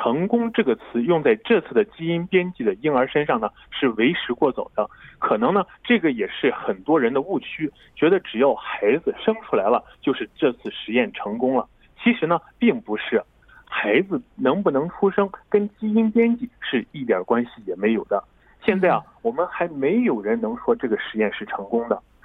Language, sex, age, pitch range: Korean, male, 30-49, 170-240 Hz